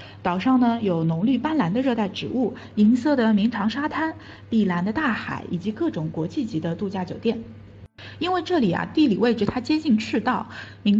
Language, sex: Chinese, female